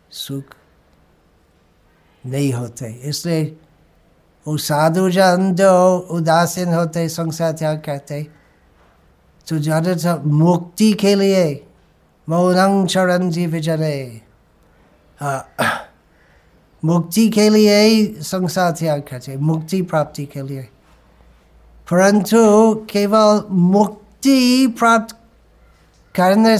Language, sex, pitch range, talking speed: Hindi, male, 140-185 Hz, 70 wpm